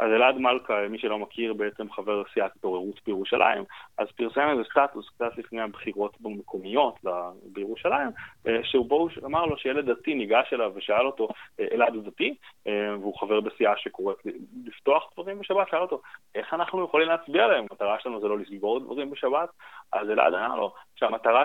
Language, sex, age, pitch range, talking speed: Hebrew, male, 20-39, 120-185 Hz, 170 wpm